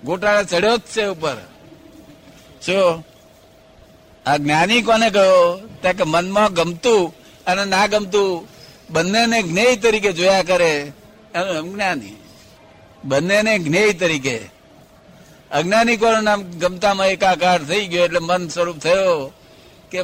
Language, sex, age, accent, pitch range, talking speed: Gujarati, male, 60-79, native, 160-205 Hz, 105 wpm